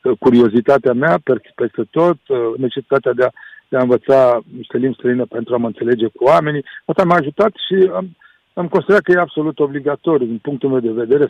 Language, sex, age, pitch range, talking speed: Romanian, male, 60-79, 125-175 Hz, 180 wpm